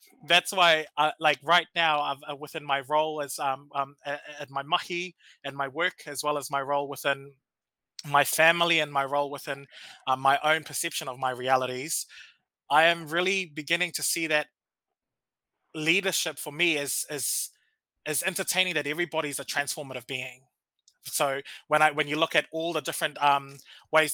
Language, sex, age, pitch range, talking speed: English, male, 20-39, 140-165 Hz, 175 wpm